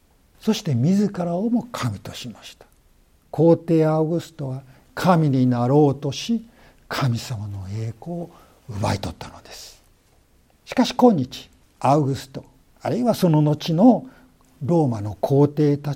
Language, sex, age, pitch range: Japanese, male, 60-79, 125-175 Hz